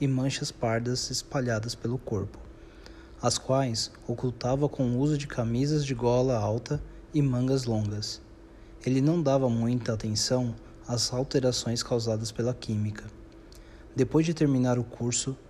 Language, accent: Portuguese, Brazilian